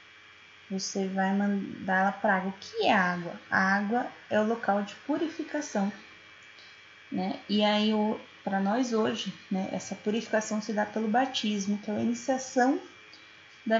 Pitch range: 195-255 Hz